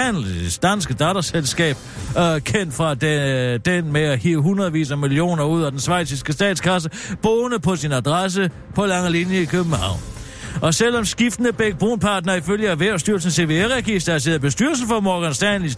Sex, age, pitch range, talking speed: male, 60-79, 135-185 Hz, 155 wpm